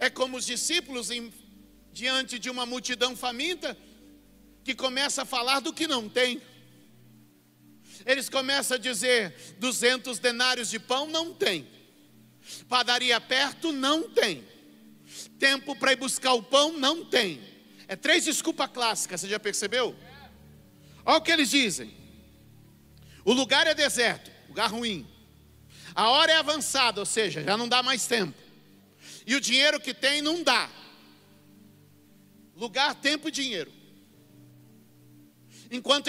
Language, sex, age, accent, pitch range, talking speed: Portuguese, male, 50-69, Brazilian, 210-275 Hz, 135 wpm